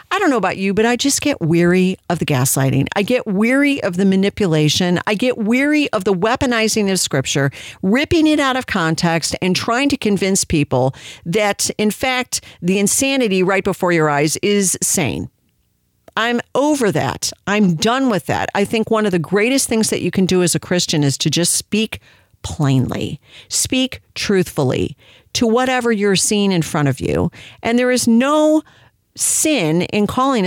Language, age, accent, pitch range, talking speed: English, 50-69, American, 170-250 Hz, 180 wpm